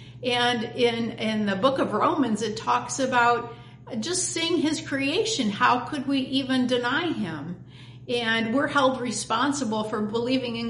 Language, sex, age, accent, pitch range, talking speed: English, female, 50-69, American, 185-255 Hz, 150 wpm